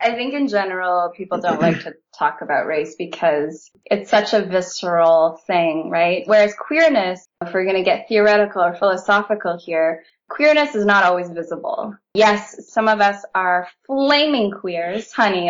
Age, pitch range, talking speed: 10-29, 185-225 Hz, 165 wpm